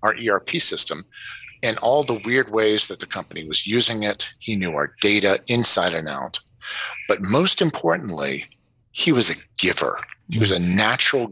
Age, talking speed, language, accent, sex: 50-69, 170 wpm, English, American, male